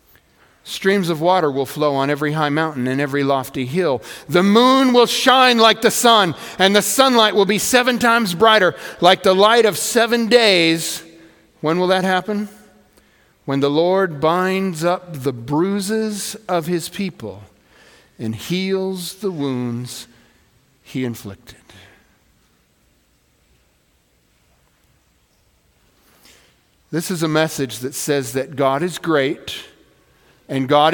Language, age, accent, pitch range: English, 50-69, American, 165-235 Hz